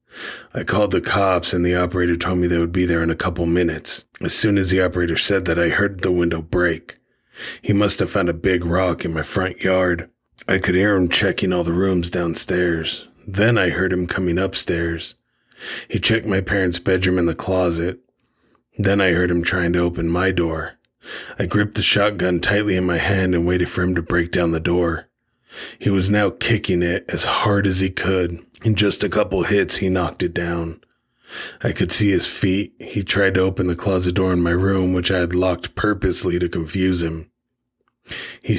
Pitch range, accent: 85-95 Hz, American